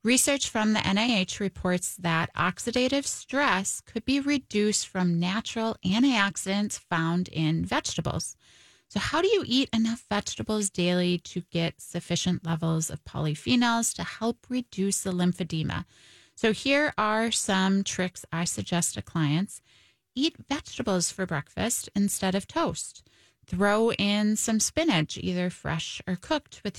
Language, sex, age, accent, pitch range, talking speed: English, female, 20-39, American, 175-225 Hz, 135 wpm